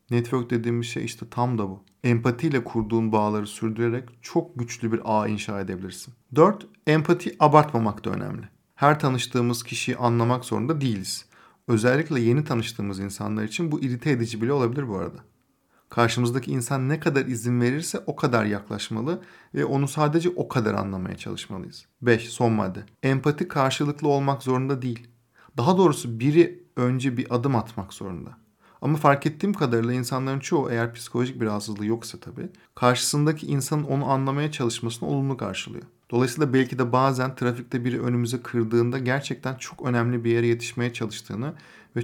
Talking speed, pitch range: 155 wpm, 115-140 Hz